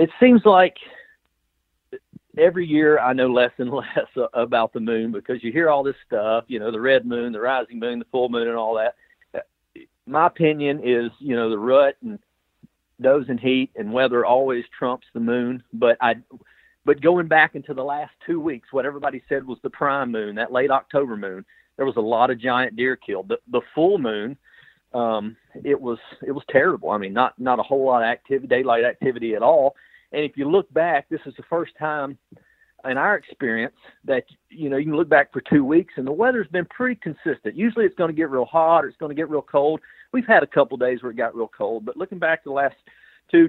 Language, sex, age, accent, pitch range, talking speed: English, male, 40-59, American, 125-170 Hz, 225 wpm